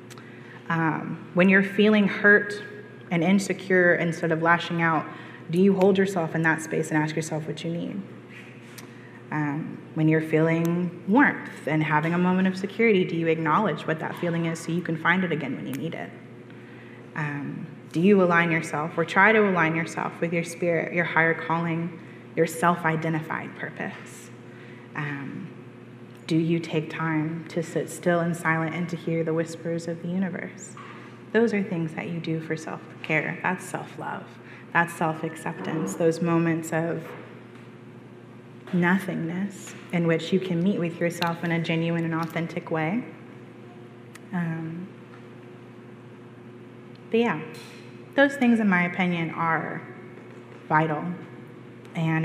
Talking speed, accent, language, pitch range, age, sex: 150 wpm, American, English, 130-175 Hz, 20-39, female